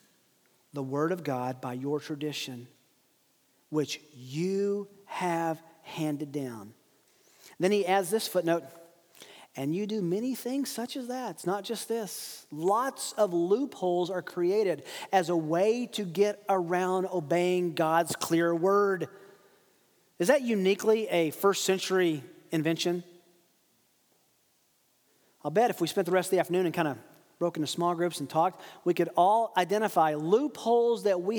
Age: 40-59